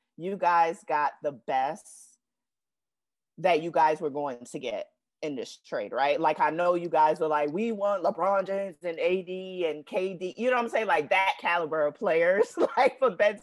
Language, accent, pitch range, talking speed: English, American, 155-205 Hz, 195 wpm